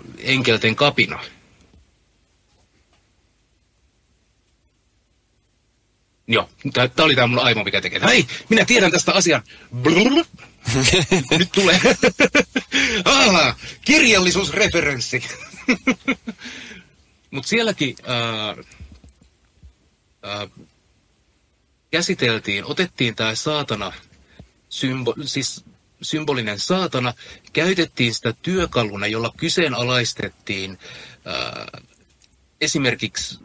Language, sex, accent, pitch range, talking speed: English, male, Finnish, 105-155 Hz, 70 wpm